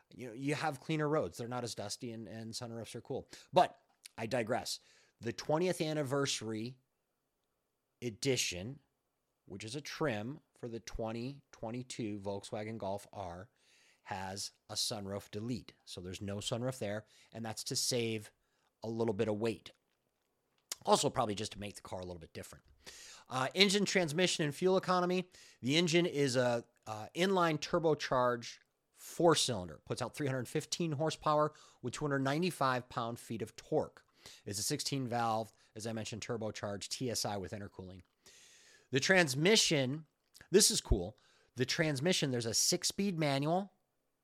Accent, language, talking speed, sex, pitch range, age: American, English, 145 wpm, male, 110-150 Hz, 30-49